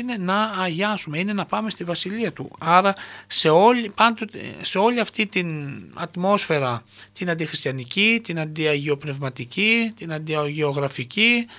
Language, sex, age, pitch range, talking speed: Greek, male, 60-79, 145-195 Hz, 125 wpm